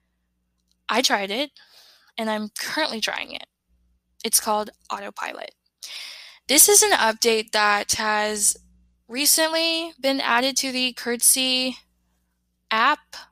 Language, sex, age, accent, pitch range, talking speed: English, female, 10-29, American, 215-275 Hz, 110 wpm